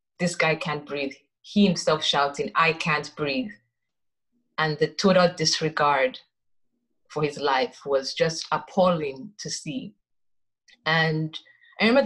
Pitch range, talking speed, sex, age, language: 150-195 Hz, 125 wpm, female, 30-49, English